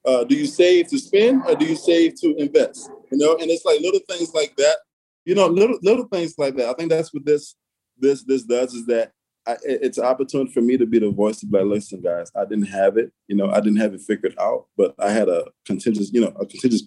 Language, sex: English, male